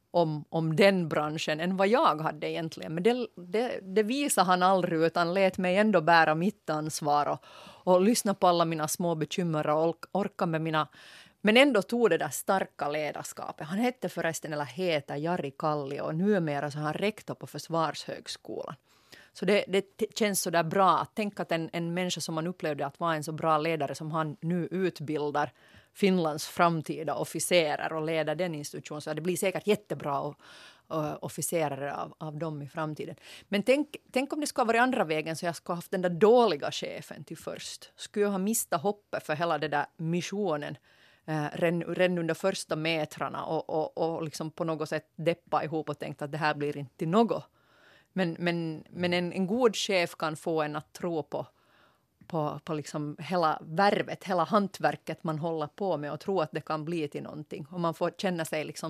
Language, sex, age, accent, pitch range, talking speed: Swedish, female, 30-49, Finnish, 155-185 Hz, 195 wpm